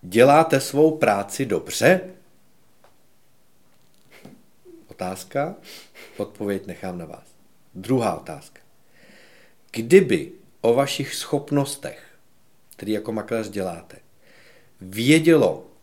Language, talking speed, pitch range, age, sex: Czech, 75 wpm, 100-125 Hz, 50-69, male